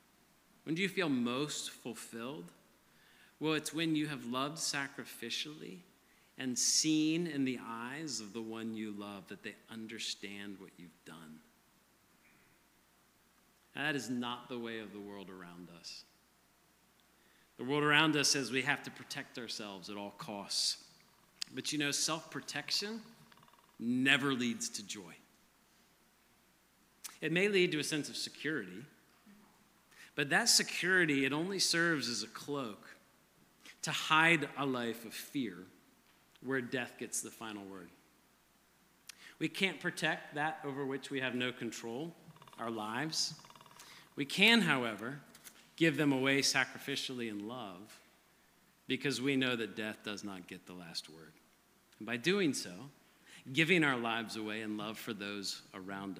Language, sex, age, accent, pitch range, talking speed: English, male, 40-59, American, 110-155 Hz, 145 wpm